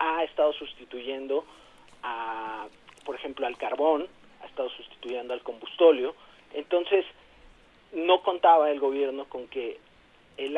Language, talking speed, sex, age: Spanish, 120 wpm, male, 40-59